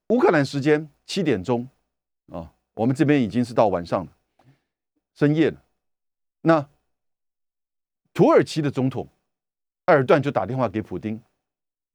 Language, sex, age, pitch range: Chinese, male, 50-69, 120-180 Hz